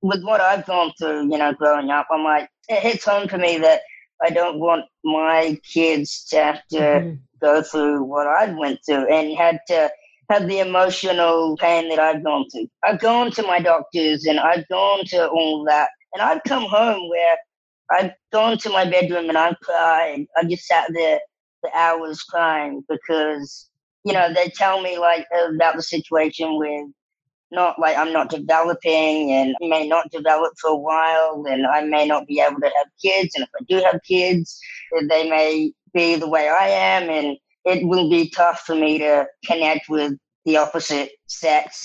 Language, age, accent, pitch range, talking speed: English, 20-39, American, 150-180 Hz, 190 wpm